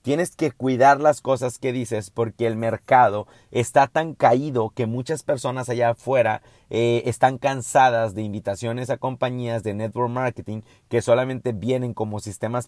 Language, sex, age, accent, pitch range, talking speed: Spanish, male, 30-49, Mexican, 115-130 Hz, 155 wpm